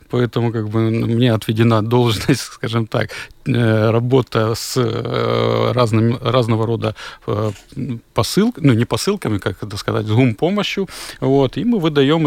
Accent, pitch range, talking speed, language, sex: native, 110-135 Hz, 110 wpm, Ukrainian, male